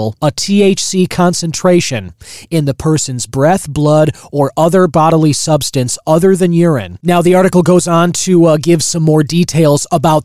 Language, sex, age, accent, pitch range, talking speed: English, male, 20-39, American, 140-180 Hz, 160 wpm